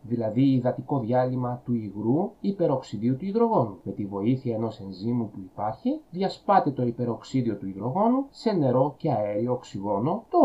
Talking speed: 150 wpm